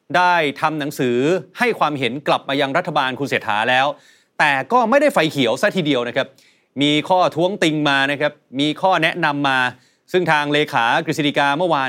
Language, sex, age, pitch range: Thai, male, 30-49, 145-185 Hz